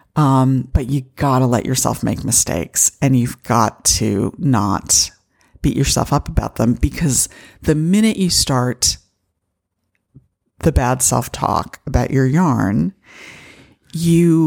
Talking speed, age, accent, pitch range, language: 130 wpm, 50-69, American, 115-155 Hz, English